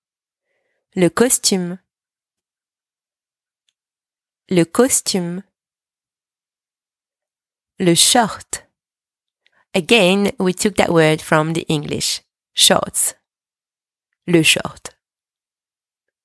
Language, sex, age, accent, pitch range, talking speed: English, female, 30-49, French, 175-240 Hz, 65 wpm